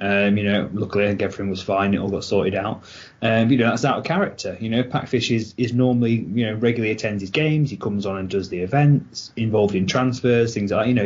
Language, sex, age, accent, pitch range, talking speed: English, male, 20-39, British, 100-125 Hz, 255 wpm